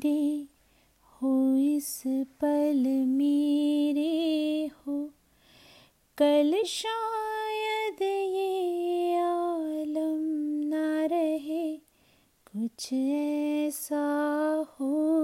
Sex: female